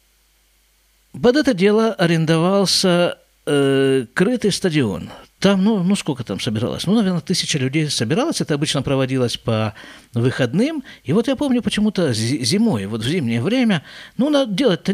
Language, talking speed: Russian, 145 wpm